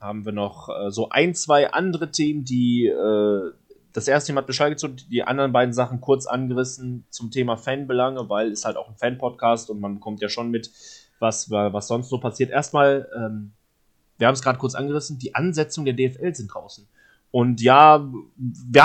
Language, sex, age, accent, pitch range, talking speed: German, male, 30-49, German, 120-185 Hz, 190 wpm